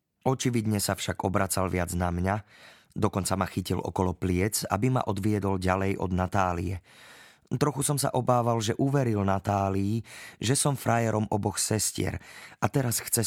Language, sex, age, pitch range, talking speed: Slovak, male, 30-49, 95-120 Hz, 150 wpm